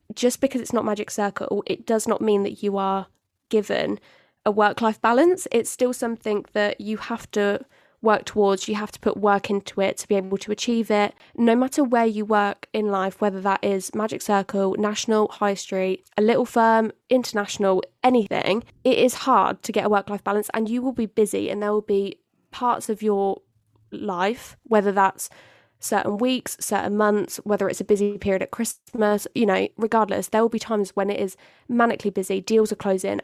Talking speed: 195 wpm